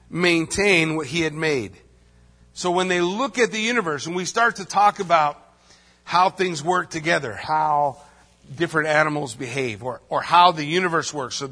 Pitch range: 140-185 Hz